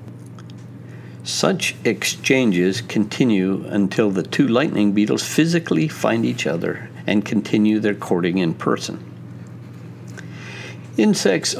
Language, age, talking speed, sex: English, 60-79, 100 wpm, male